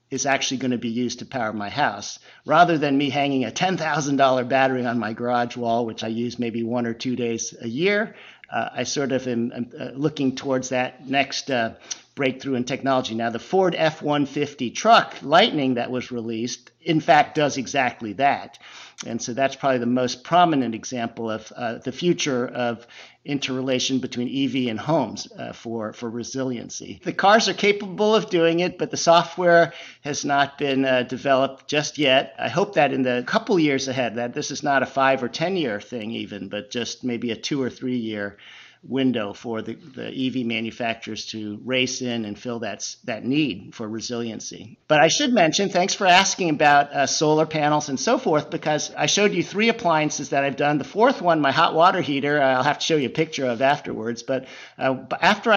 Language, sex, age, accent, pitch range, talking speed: English, male, 50-69, American, 120-155 Hz, 195 wpm